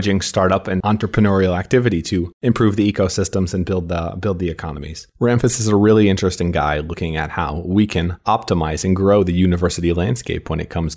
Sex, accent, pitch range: male, American, 85-110 Hz